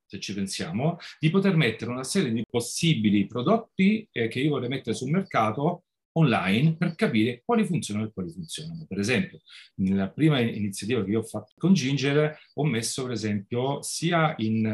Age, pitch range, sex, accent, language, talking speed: 40-59, 105-155 Hz, male, native, Italian, 170 wpm